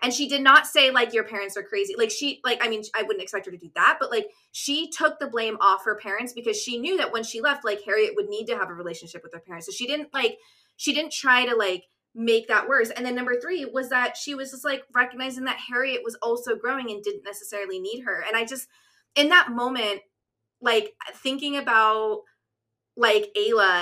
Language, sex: English, female